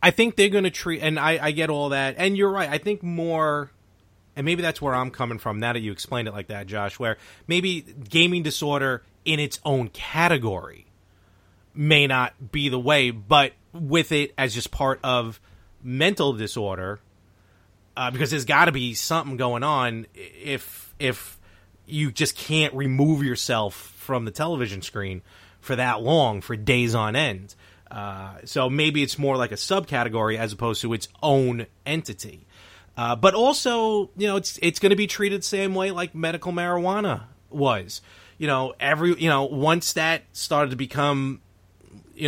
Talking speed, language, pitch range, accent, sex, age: 175 wpm, English, 110-155 Hz, American, male, 30-49